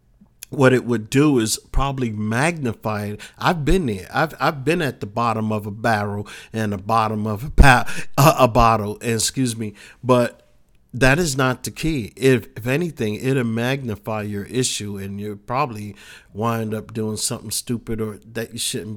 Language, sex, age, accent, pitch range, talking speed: English, male, 50-69, American, 110-135 Hz, 175 wpm